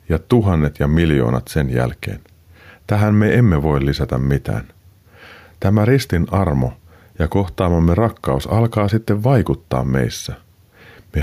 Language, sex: Finnish, male